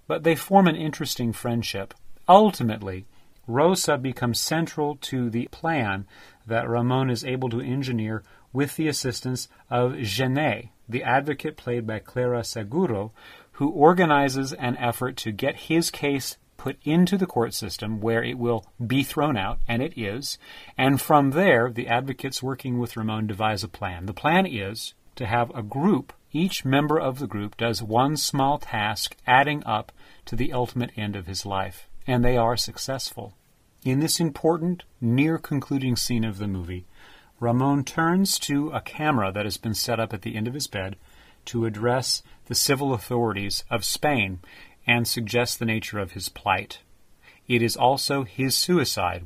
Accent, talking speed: American, 165 wpm